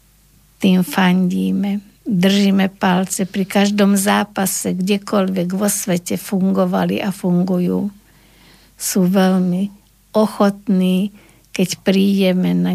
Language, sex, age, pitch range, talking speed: Slovak, female, 50-69, 180-200 Hz, 90 wpm